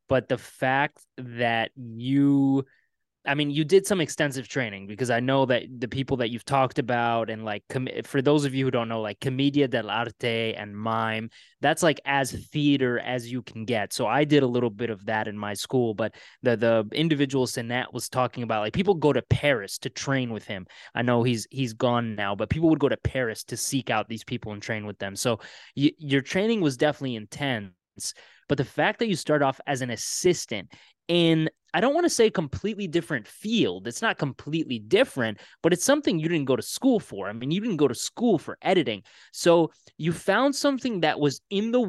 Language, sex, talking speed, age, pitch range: English, male, 215 wpm, 20-39, 120-155 Hz